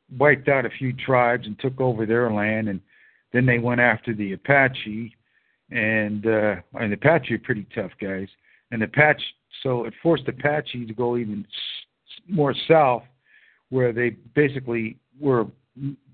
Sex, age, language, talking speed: male, 60-79, English, 160 wpm